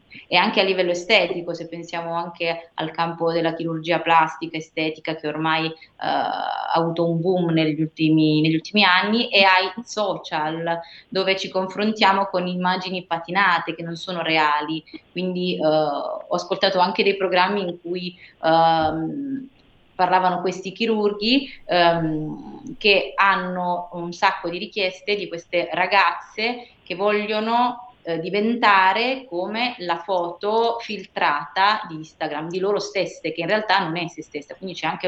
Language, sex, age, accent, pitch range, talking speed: Italian, female, 20-39, native, 165-205 Hz, 145 wpm